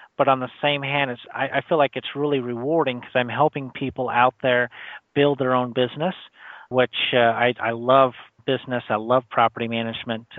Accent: American